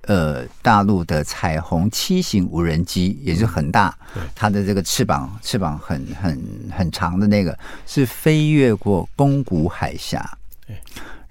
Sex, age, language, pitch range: male, 50-69, Chinese, 85-120 Hz